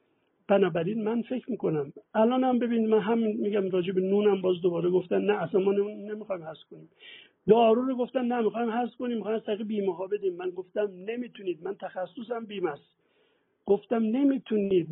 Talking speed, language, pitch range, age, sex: 175 wpm, Persian, 185-245 Hz, 60-79, male